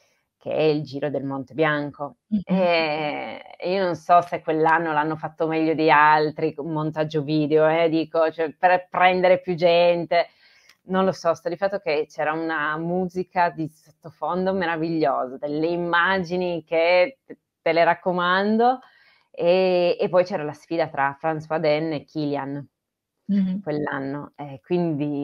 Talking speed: 145 wpm